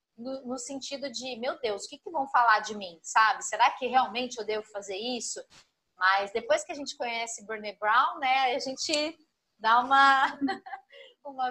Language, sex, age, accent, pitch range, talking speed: Portuguese, female, 20-39, Brazilian, 205-265 Hz, 170 wpm